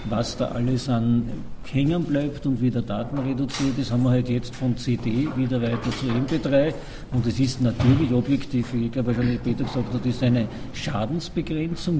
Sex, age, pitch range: male, 50-69, 125-160 Hz